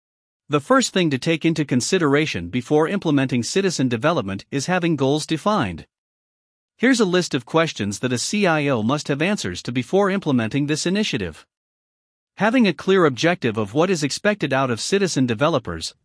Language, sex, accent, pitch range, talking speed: English, male, American, 130-180 Hz, 160 wpm